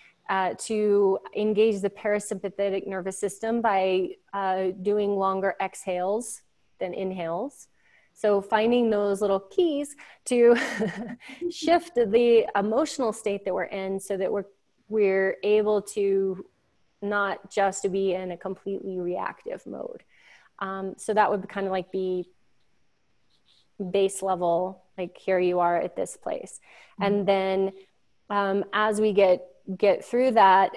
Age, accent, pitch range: 20-39, American, 190-215 Hz